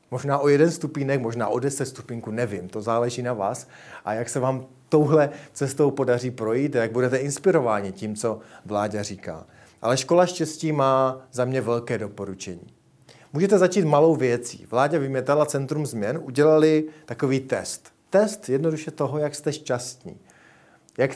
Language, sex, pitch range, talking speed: Czech, male, 115-150 Hz, 155 wpm